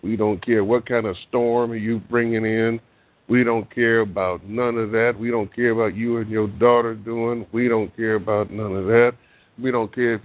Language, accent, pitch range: English, American, 100-120 Hz